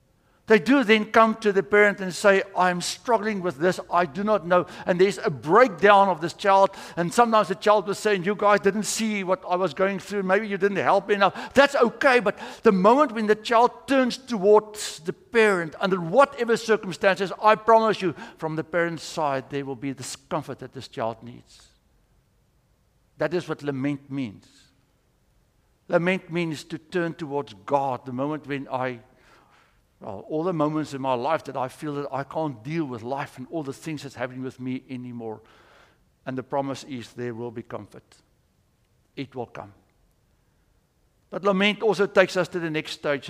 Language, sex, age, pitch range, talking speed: English, male, 60-79, 140-195 Hz, 185 wpm